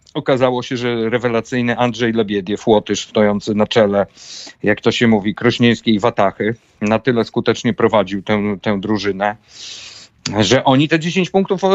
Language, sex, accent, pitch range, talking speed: Polish, male, native, 115-135 Hz, 150 wpm